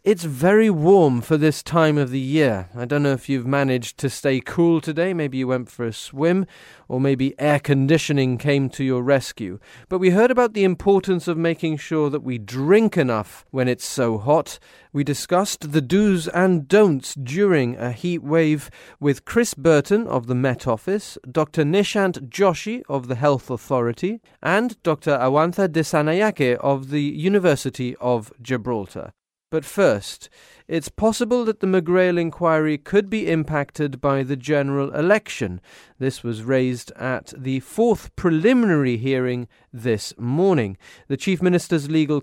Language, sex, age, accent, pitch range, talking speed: English, male, 30-49, British, 130-175 Hz, 160 wpm